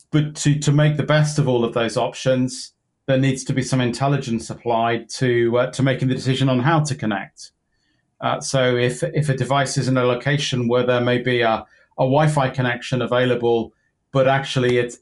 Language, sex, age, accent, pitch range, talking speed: English, male, 40-59, British, 120-135 Hz, 200 wpm